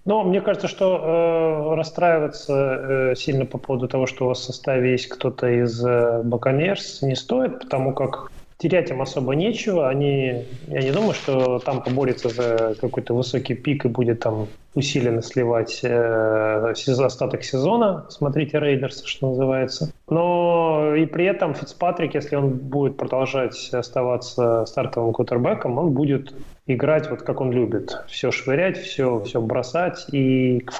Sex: male